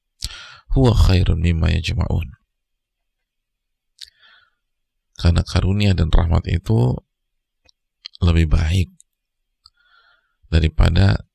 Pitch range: 85-105 Hz